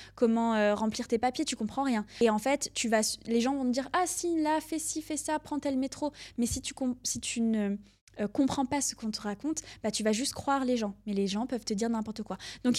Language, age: French, 20-39